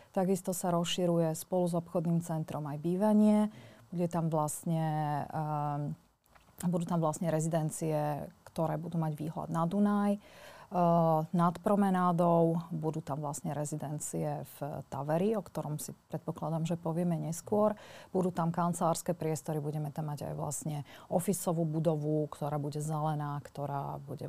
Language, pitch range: Slovak, 155-180 Hz